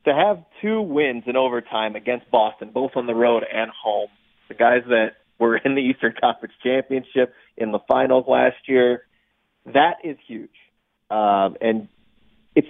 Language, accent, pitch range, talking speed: English, American, 115-140 Hz, 160 wpm